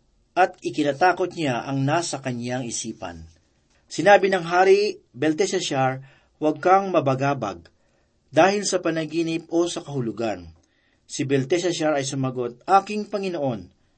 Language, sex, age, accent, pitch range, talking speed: Filipino, male, 40-59, native, 130-180 Hz, 110 wpm